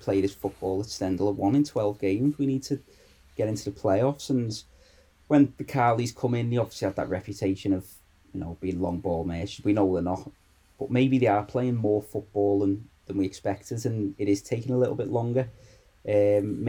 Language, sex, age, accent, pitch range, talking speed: English, male, 20-39, British, 95-125 Hz, 210 wpm